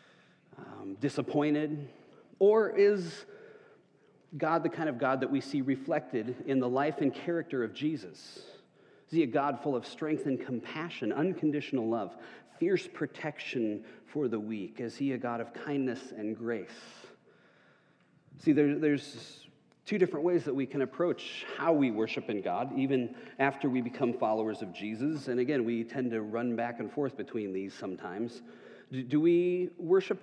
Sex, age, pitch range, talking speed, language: male, 40-59, 120-160 Hz, 160 wpm, English